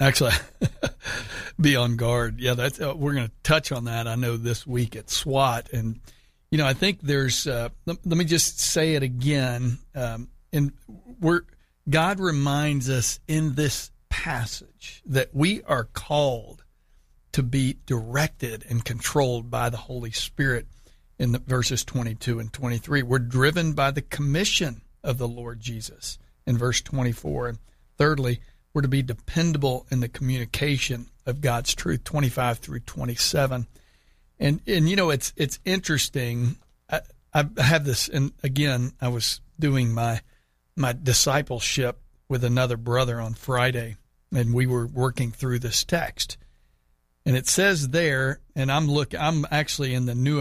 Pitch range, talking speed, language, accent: 120-145 Hz, 150 wpm, English, American